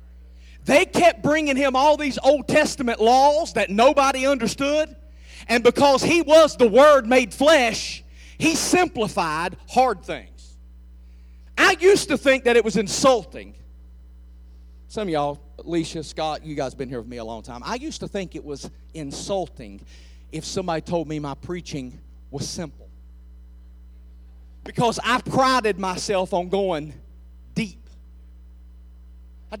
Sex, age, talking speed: male, 40-59, 140 wpm